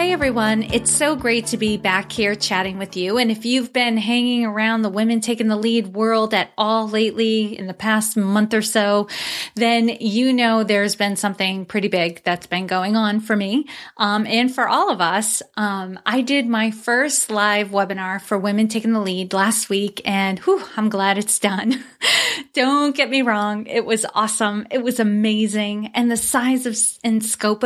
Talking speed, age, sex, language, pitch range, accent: 190 wpm, 30-49, female, English, 205-245 Hz, American